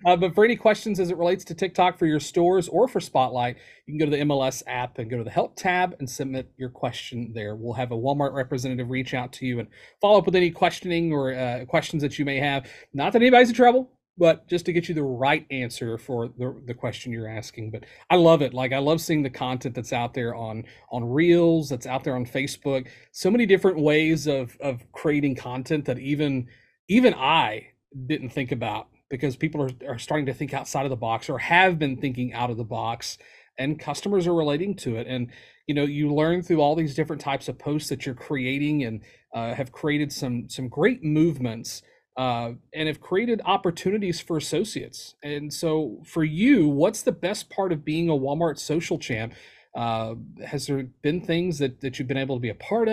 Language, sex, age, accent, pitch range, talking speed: English, male, 40-59, American, 125-170 Hz, 220 wpm